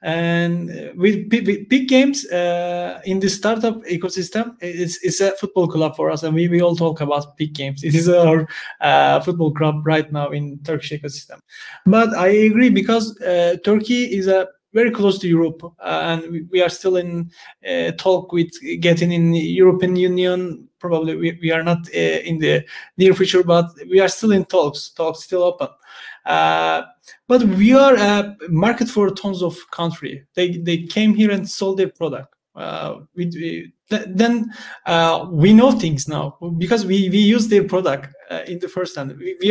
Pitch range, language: 165-205 Hz, Turkish